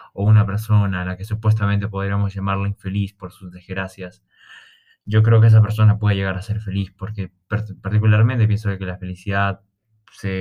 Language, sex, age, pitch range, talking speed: Spanish, male, 20-39, 95-105 Hz, 175 wpm